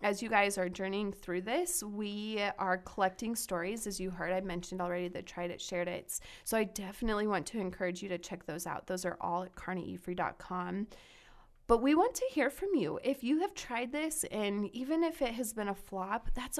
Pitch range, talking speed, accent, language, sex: 180-215 Hz, 215 wpm, American, English, female